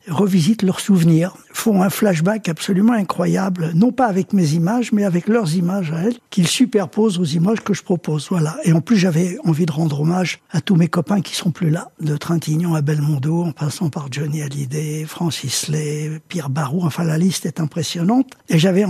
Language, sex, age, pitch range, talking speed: French, male, 60-79, 165-205 Hz, 200 wpm